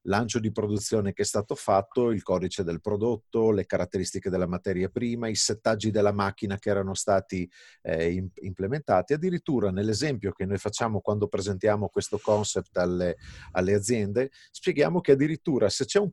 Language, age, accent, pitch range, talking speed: Italian, 40-59, native, 100-140 Hz, 160 wpm